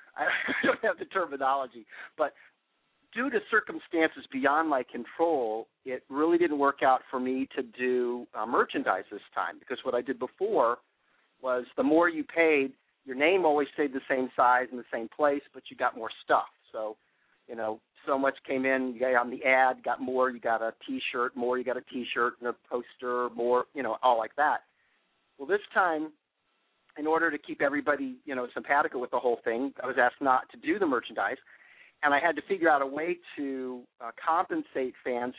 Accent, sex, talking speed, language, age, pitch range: American, male, 200 wpm, English, 40-59, 120-140 Hz